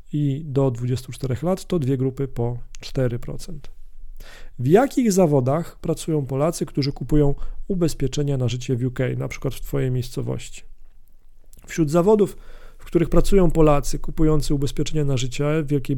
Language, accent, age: Polish, native, 40-59